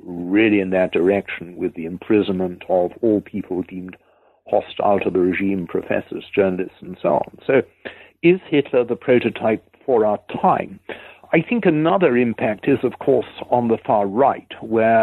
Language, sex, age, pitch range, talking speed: English, male, 60-79, 95-125 Hz, 160 wpm